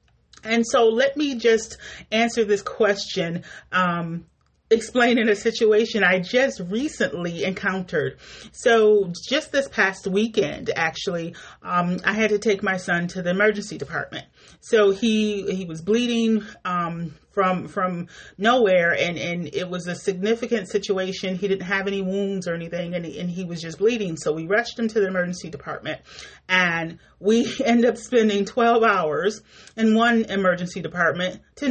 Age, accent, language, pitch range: 30-49, American, English, 180-220 Hz